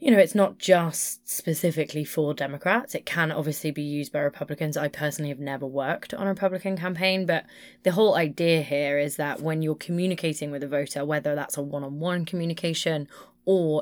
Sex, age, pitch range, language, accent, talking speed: female, 20-39, 150-185 Hz, English, British, 185 wpm